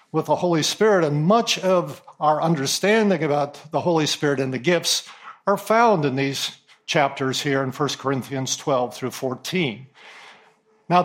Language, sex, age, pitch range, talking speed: English, male, 50-69, 150-200 Hz, 160 wpm